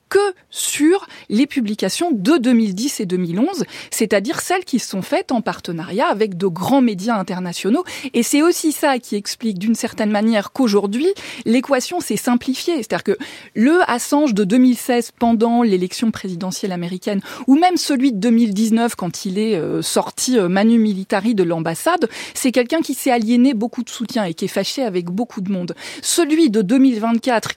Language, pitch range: French, 195-265 Hz